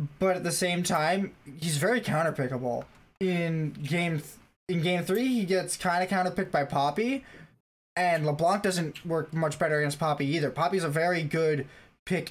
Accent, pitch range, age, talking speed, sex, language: American, 140-180 Hz, 20-39, 175 wpm, male, English